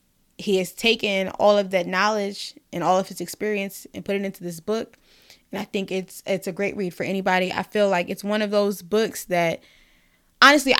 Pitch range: 185-215 Hz